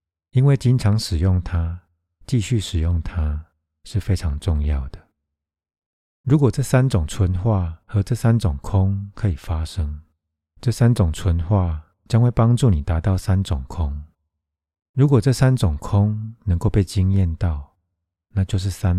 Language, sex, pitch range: Chinese, male, 80-100 Hz